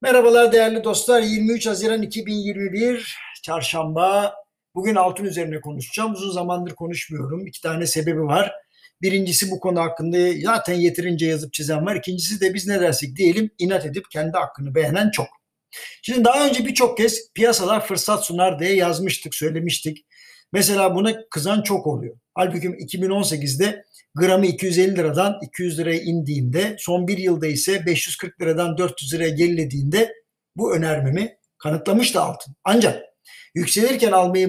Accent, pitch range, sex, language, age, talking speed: native, 165-220 Hz, male, Turkish, 60-79, 140 wpm